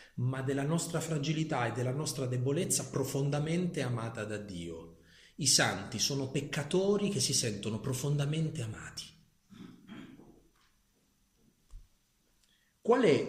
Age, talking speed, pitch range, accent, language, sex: 40-59, 105 wpm, 110-160 Hz, native, Italian, male